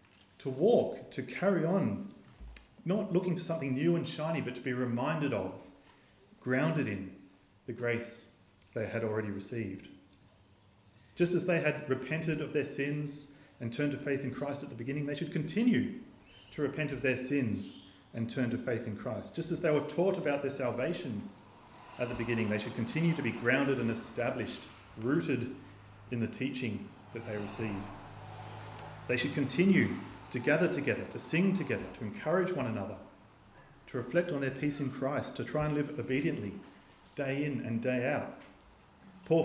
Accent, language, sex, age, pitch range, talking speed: Australian, English, male, 30-49, 115-145 Hz, 170 wpm